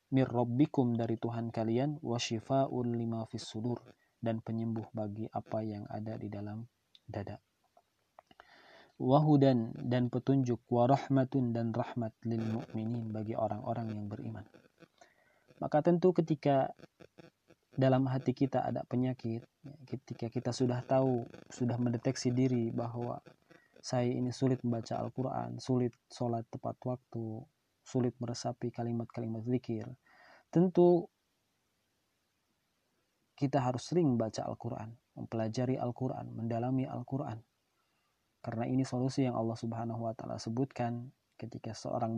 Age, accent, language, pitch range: 30-49, native, Indonesian, 115-130 Hz